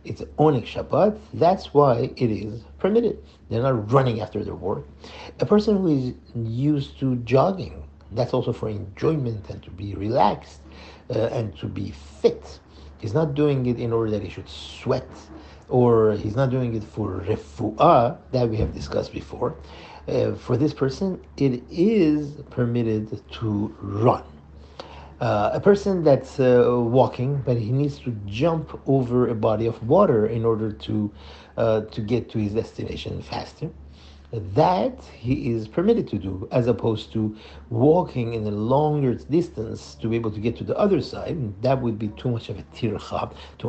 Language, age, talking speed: English, 50-69, 170 wpm